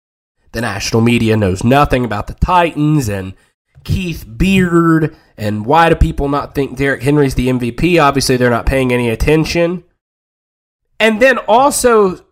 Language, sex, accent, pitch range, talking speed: English, male, American, 115-160 Hz, 145 wpm